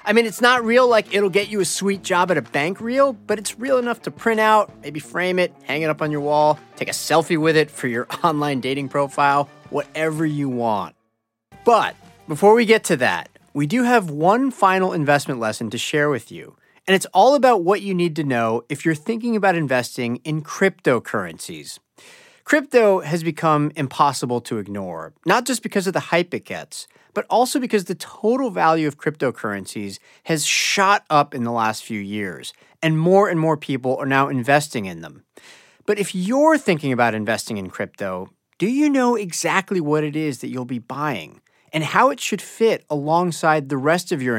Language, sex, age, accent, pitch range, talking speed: English, male, 30-49, American, 130-200 Hz, 200 wpm